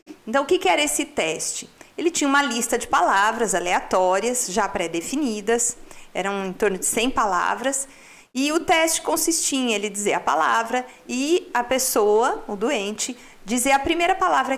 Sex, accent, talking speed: female, Brazilian, 160 wpm